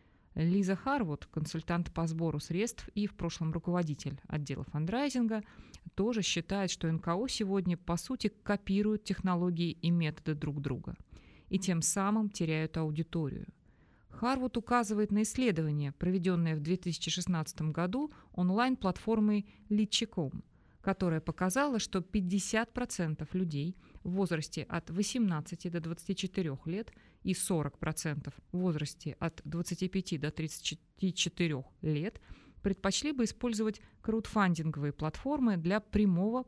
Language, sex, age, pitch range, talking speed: Russian, female, 30-49, 160-210 Hz, 110 wpm